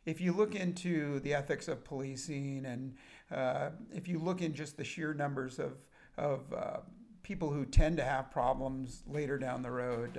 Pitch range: 130-170 Hz